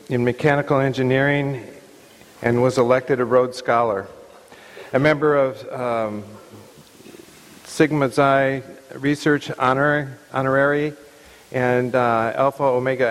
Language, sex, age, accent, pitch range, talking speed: English, male, 50-69, American, 125-145 Hz, 95 wpm